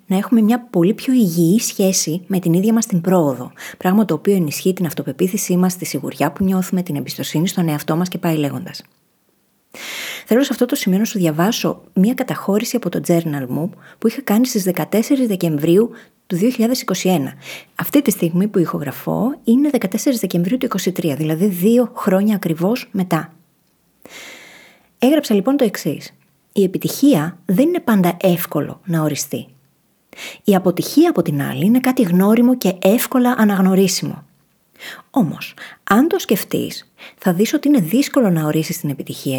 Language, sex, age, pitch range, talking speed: Greek, female, 30-49, 170-230 Hz, 160 wpm